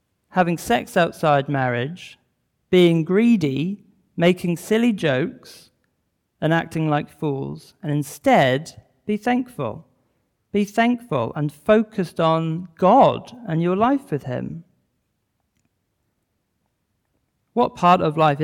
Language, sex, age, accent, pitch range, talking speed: English, male, 40-59, British, 145-185 Hz, 105 wpm